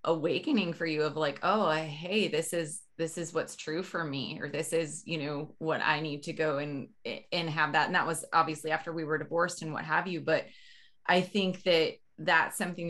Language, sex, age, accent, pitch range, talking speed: English, female, 20-39, American, 165-200 Hz, 220 wpm